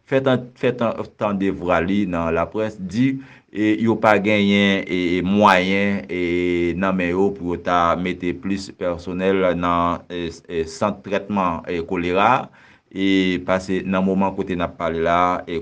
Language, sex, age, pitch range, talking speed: French, male, 50-69, 90-100 Hz, 140 wpm